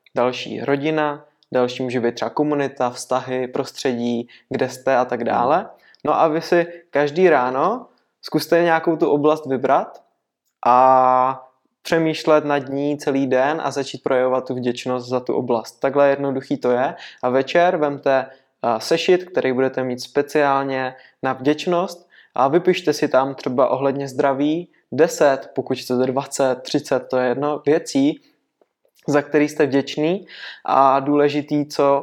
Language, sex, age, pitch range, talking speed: Czech, male, 20-39, 130-150 Hz, 145 wpm